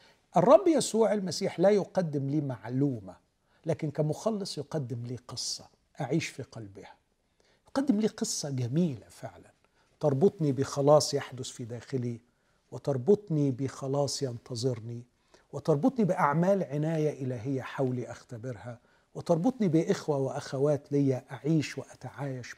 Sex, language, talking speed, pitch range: male, Arabic, 105 wpm, 130-185 Hz